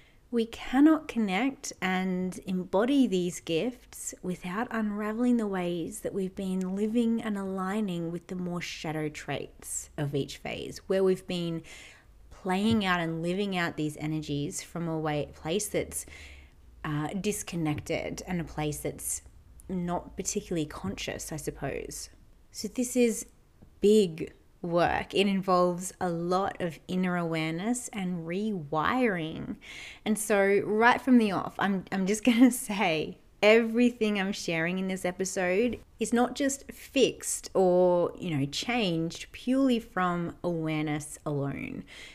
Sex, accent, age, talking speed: female, Australian, 30-49, 135 wpm